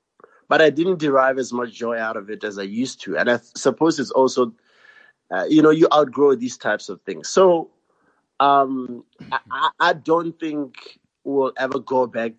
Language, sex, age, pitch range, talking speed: English, male, 30-49, 120-155 Hz, 185 wpm